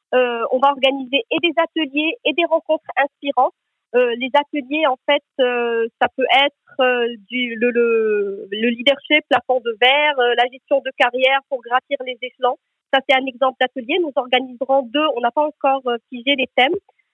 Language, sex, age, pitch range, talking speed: French, female, 40-59, 250-290 Hz, 190 wpm